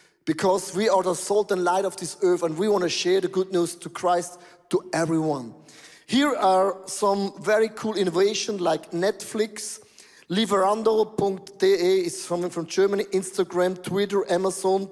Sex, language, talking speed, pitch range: male, English, 155 wpm, 180-240 Hz